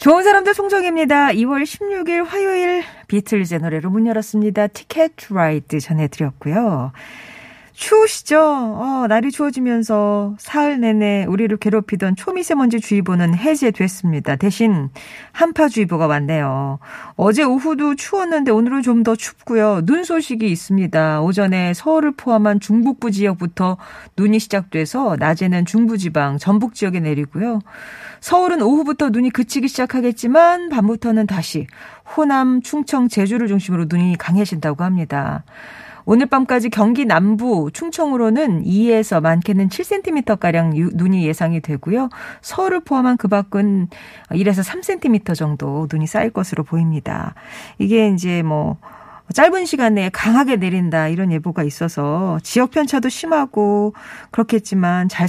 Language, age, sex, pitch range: Korean, 40-59, female, 175-255 Hz